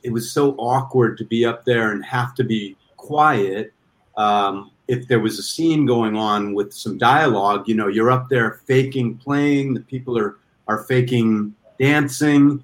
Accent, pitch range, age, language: American, 110-130 Hz, 40-59, English